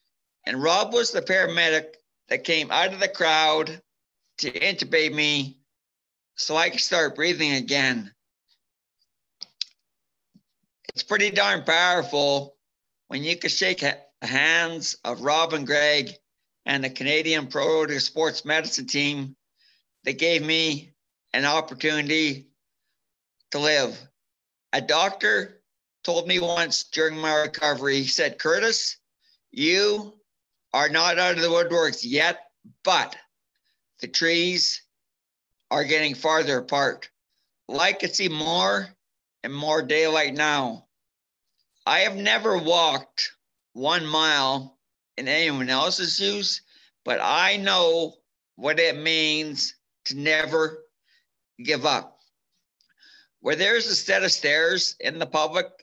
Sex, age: male, 60-79